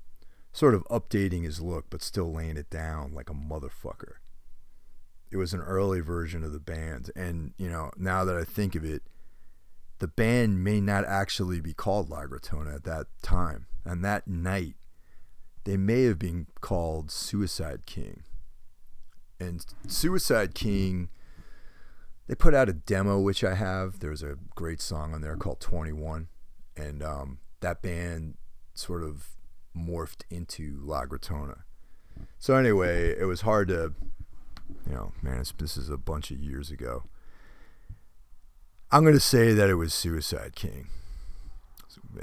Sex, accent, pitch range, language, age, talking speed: male, American, 75-95 Hz, English, 40-59, 155 wpm